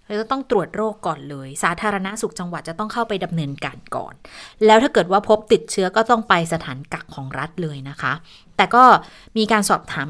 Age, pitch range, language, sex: 20-39, 170-225 Hz, Thai, female